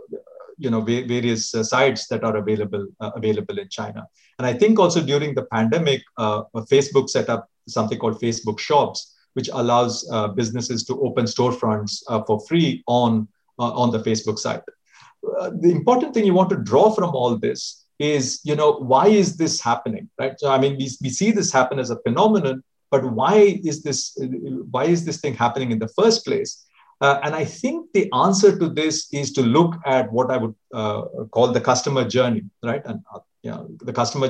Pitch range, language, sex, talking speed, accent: 120-180 Hz, English, male, 195 wpm, Indian